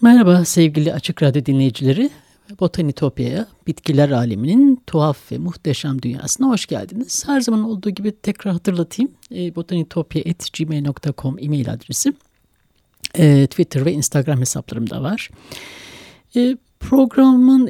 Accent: native